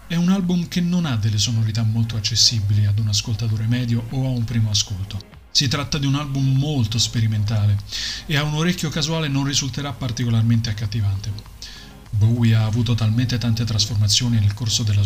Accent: native